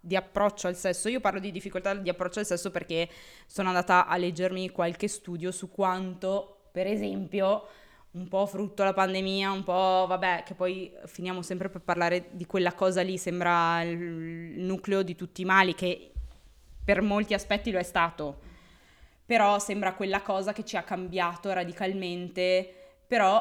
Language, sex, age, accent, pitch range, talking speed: Italian, female, 20-39, native, 175-200 Hz, 165 wpm